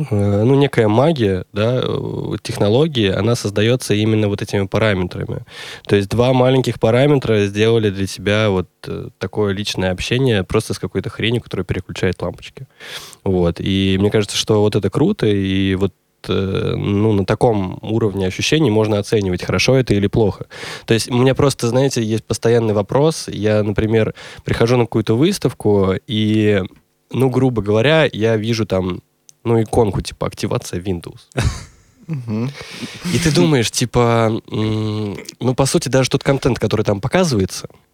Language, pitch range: Russian, 100-130 Hz